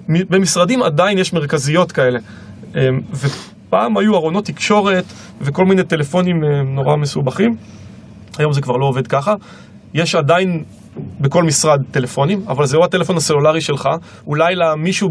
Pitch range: 135-180 Hz